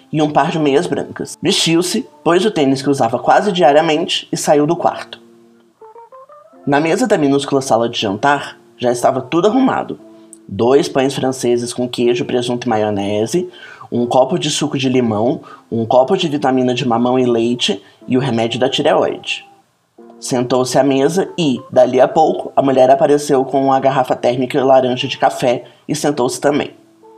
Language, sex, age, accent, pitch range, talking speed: Portuguese, male, 20-39, Brazilian, 120-150 Hz, 170 wpm